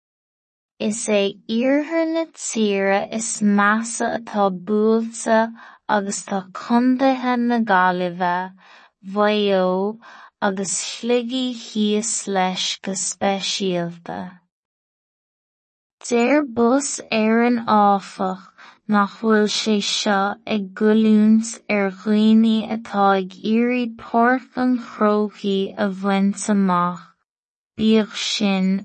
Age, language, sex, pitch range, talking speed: 20-39, English, female, 195-230 Hz, 35 wpm